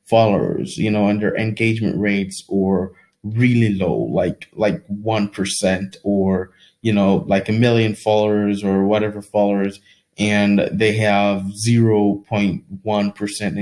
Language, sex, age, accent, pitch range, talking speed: English, male, 20-39, American, 100-115 Hz, 115 wpm